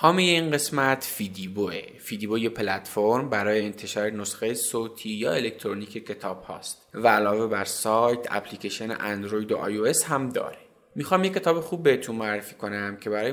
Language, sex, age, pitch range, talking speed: Persian, male, 20-39, 105-130 Hz, 155 wpm